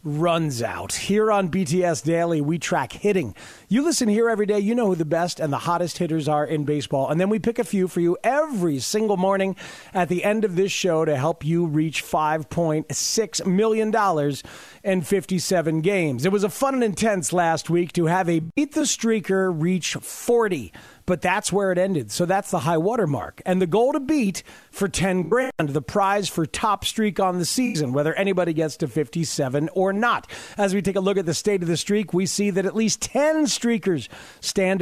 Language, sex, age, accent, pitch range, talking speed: English, male, 40-59, American, 165-210 Hz, 205 wpm